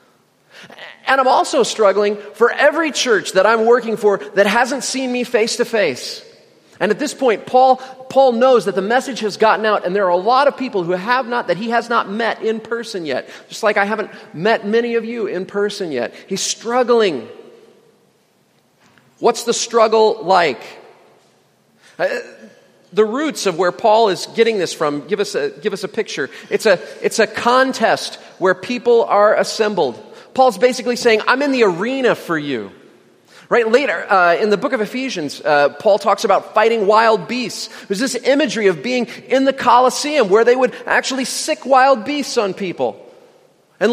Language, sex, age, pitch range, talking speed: English, male, 40-59, 200-255 Hz, 180 wpm